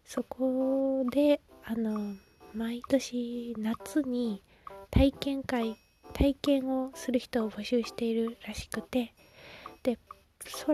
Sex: female